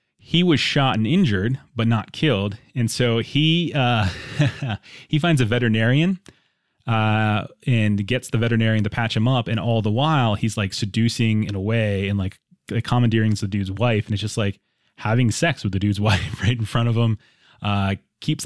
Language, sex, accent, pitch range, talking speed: English, male, American, 105-120 Hz, 190 wpm